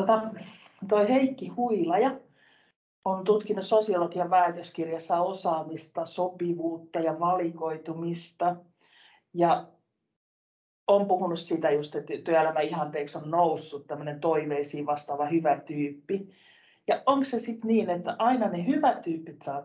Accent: native